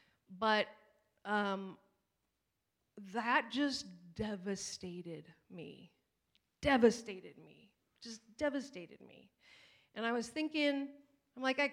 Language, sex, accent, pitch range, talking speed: English, female, American, 215-280 Hz, 85 wpm